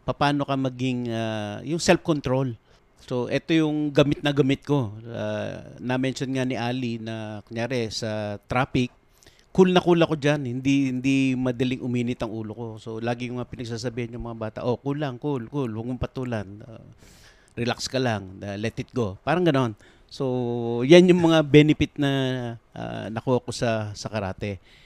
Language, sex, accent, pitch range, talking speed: English, male, Filipino, 115-135 Hz, 170 wpm